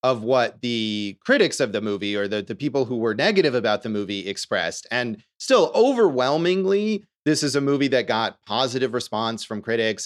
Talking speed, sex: 185 wpm, male